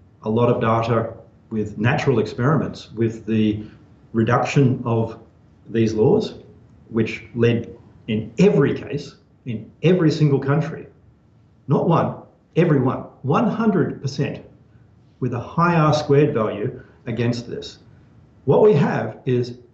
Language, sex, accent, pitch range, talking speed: English, male, Australian, 115-140 Hz, 120 wpm